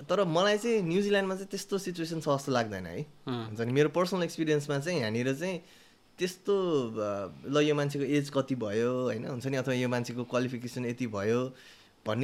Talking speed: 110 wpm